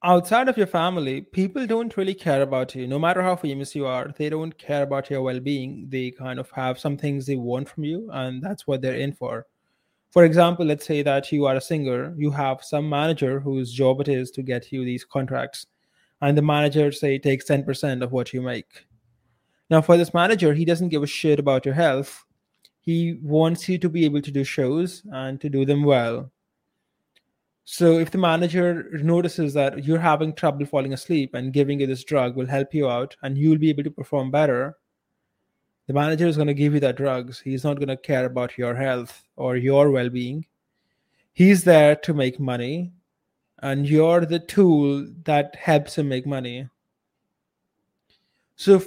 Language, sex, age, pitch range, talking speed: English, male, 20-39, 135-165 Hz, 195 wpm